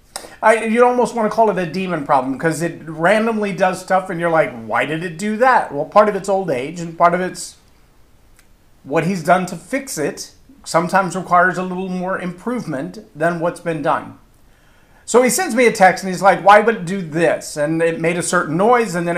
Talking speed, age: 220 wpm, 40-59